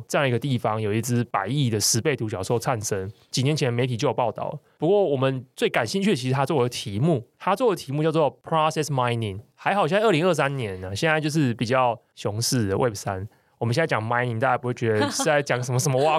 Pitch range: 115-150 Hz